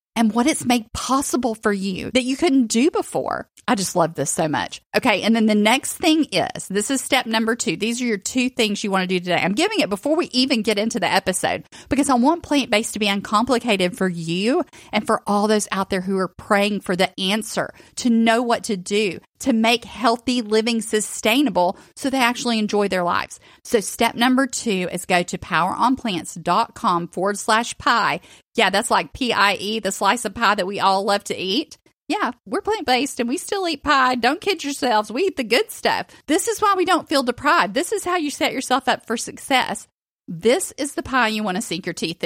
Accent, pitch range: American, 200-255 Hz